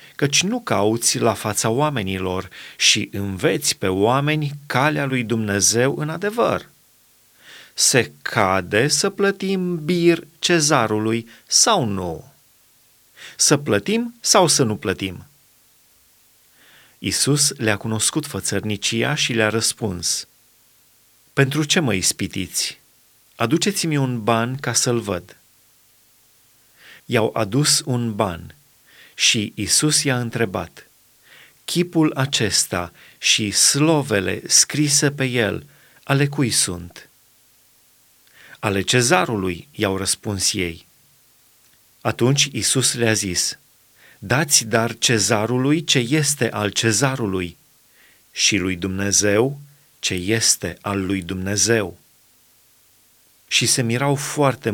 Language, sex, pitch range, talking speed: Romanian, male, 100-140 Hz, 100 wpm